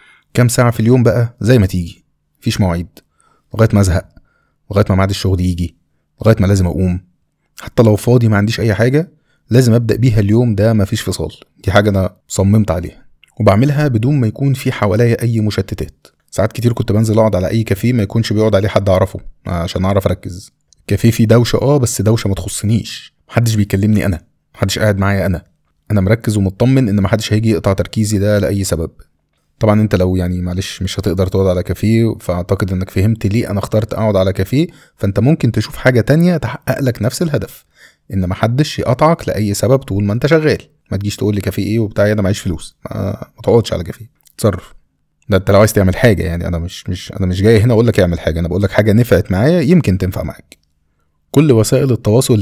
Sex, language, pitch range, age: male, Arabic, 95-115 Hz, 20-39